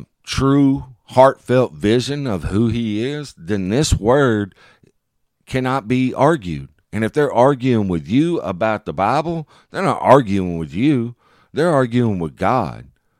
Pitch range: 95-135 Hz